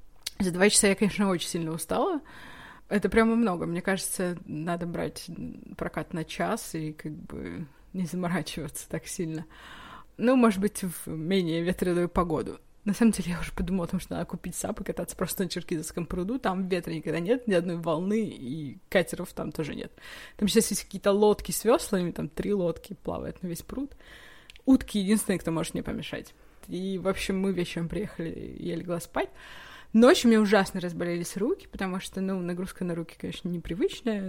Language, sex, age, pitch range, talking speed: Russian, female, 20-39, 175-215 Hz, 180 wpm